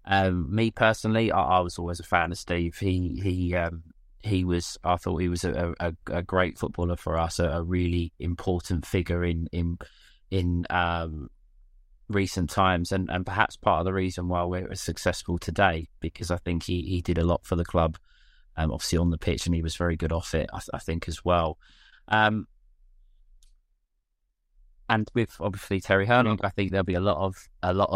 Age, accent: 20-39, British